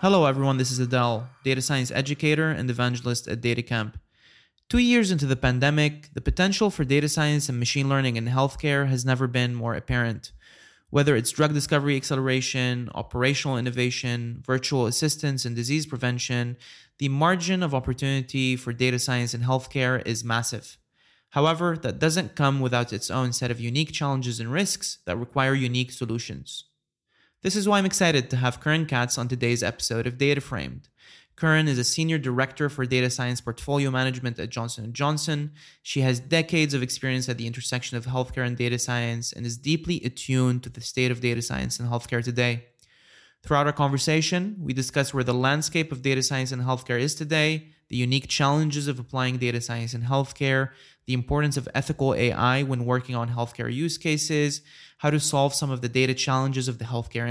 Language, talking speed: English, 180 wpm